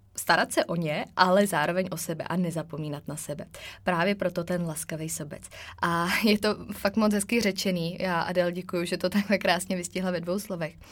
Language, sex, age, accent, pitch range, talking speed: Czech, female, 20-39, native, 170-195 Hz, 190 wpm